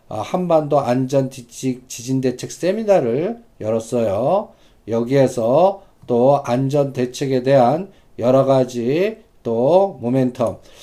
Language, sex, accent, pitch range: Korean, male, native, 120-160 Hz